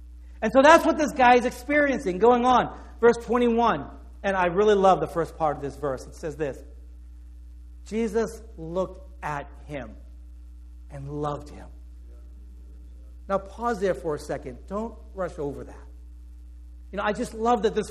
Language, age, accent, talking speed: English, 60-79, American, 165 wpm